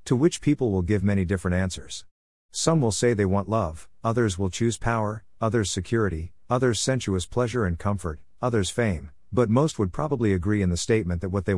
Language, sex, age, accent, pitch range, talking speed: English, male, 50-69, American, 90-115 Hz, 195 wpm